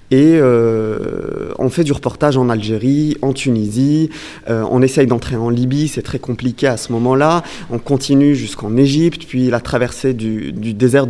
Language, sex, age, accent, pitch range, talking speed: French, male, 30-49, French, 120-145 Hz, 175 wpm